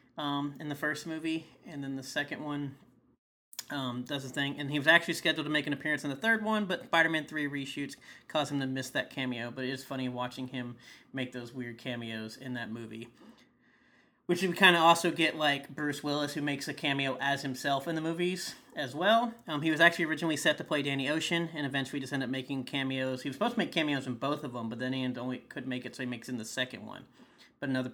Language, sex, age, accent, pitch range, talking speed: English, male, 30-49, American, 125-155 Hz, 245 wpm